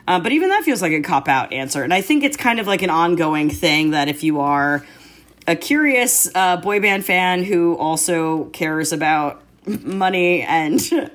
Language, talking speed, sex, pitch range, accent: English, 190 wpm, female, 155-205 Hz, American